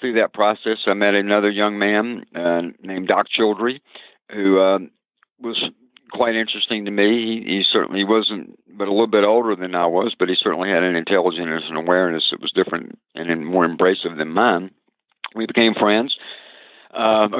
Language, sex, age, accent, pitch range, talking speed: English, male, 60-79, American, 90-110 Hz, 175 wpm